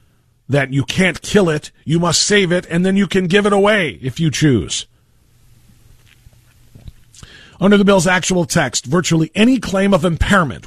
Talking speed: 165 wpm